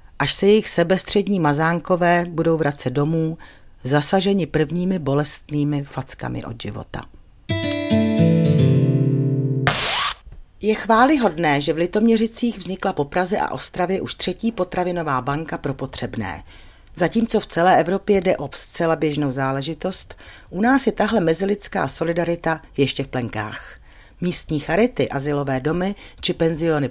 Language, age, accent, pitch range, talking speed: Czech, 40-59, native, 140-190 Hz, 120 wpm